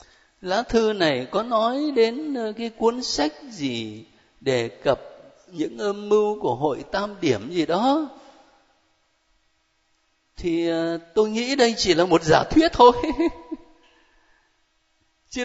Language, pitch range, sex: Vietnamese, 170-260 Hz, male